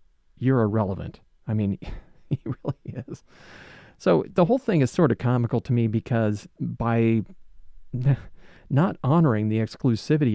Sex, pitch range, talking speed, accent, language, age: male, 100-125 Hz, 135 wpm, American, English, 40-59